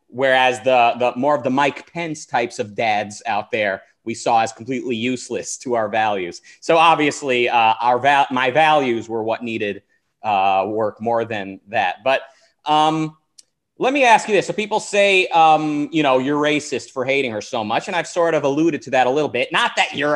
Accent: American